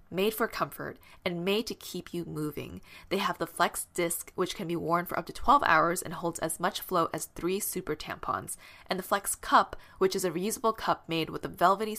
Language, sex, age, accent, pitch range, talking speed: English, female, 10-29, American, 170-215 Hz, 225 wpm